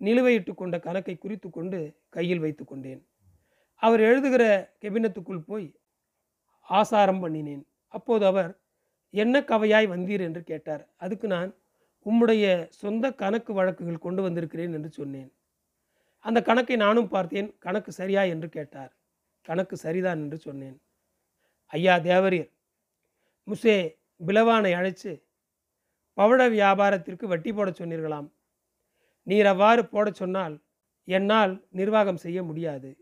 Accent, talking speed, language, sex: native, 105 wpm, Tamil, male